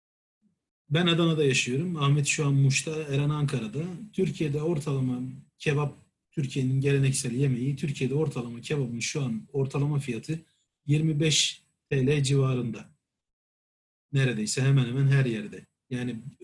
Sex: male